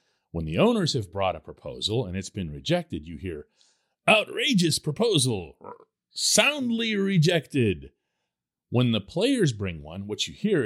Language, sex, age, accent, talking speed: English, male, 40-59, American, 140 wpm